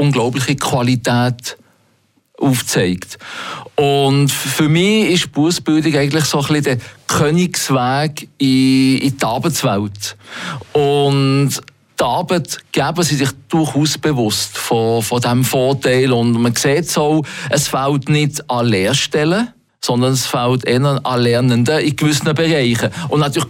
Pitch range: 125-160 Hz